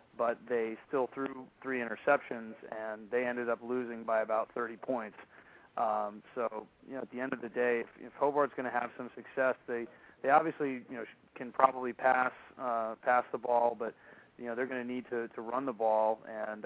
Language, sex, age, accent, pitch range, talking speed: English, male, 30-49, American, 115-130 Hz, 210 wpm